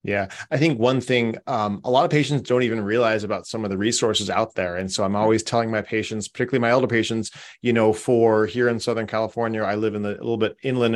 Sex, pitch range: male, 100-120 Hz